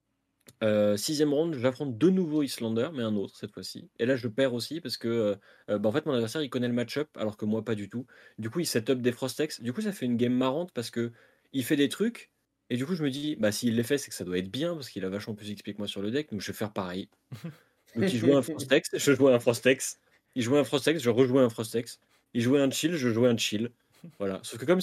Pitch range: 110-140 Hz